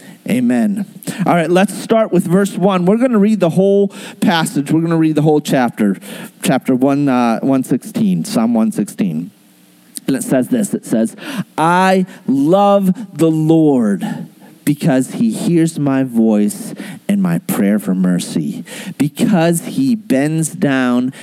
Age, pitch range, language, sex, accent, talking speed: 40-59, 160-225 Hz, English, male, American, 145 wpm